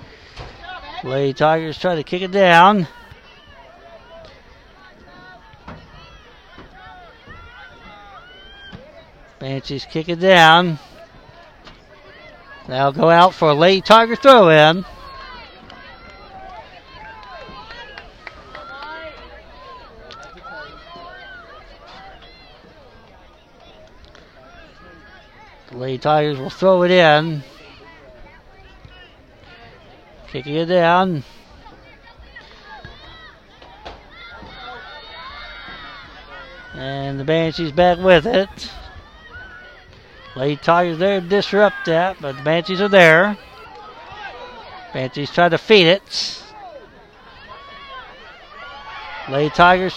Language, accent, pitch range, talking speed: English, American, 150-190 Hz, 60 wpm